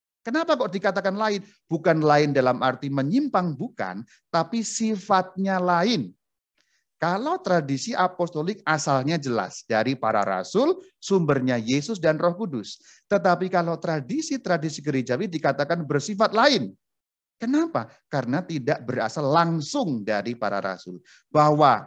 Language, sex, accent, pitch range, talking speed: Indonesian, male, native, 125-185 Hz, 115 wpm